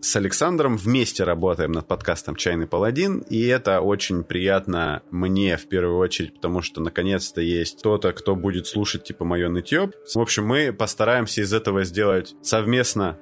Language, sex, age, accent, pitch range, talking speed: Russian, male, 30-49, native, 95-120 Hz, 160 wpm